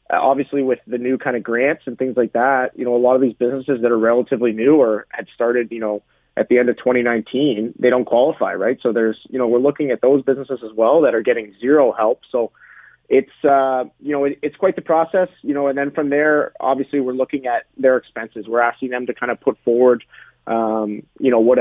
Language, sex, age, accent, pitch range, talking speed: English, male, 30-49, American, 120-145 Hz, 235 wpm